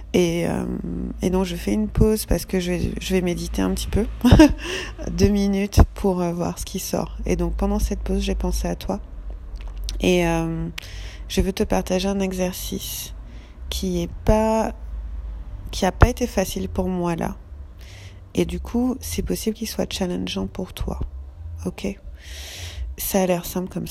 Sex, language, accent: female, French, French